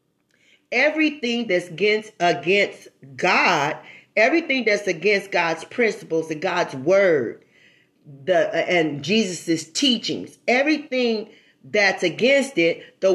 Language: English